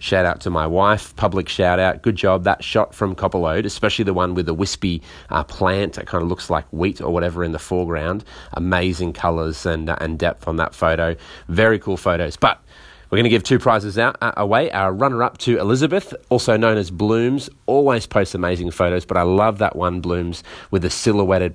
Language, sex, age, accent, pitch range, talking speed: English, male, 30-49, Australian, 85-110 Hz, 210 wpm